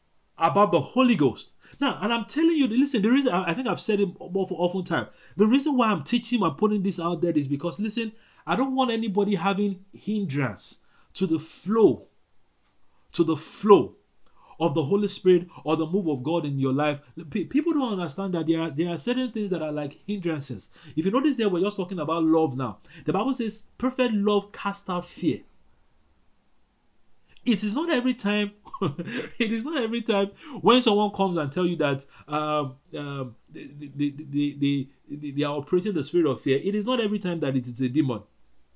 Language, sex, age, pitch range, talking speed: English, male, 30-49, 145-215 Hz, 195 wpm